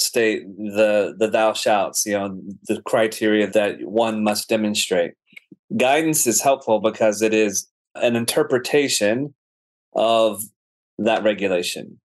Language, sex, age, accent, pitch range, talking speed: English, male, 30-49, American, 105-120 Hz, 120 wpm